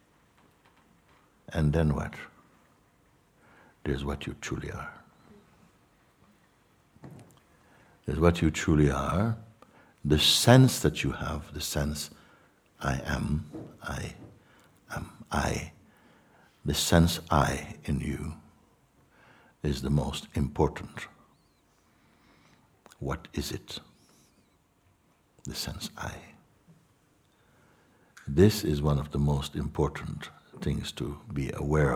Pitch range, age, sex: 75-90 Hz, 60-79, male